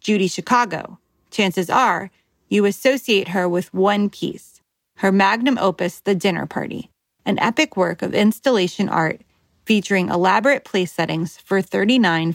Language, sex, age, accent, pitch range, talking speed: English, female, 30-49, American, 180-220 Hz, 135 wpm